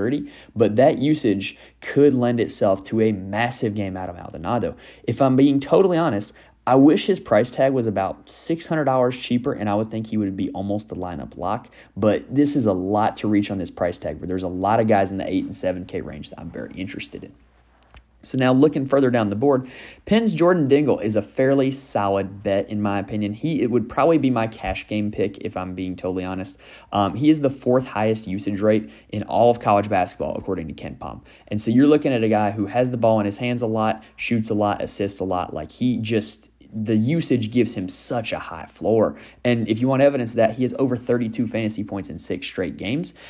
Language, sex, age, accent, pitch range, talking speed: English, male, 20-39, American, 100-130 Hz, 230 wpm